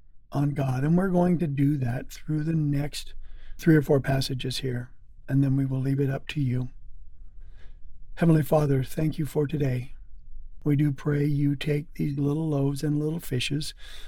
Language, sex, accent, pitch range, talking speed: English, male, American, 135-160 Hz, 180 wpm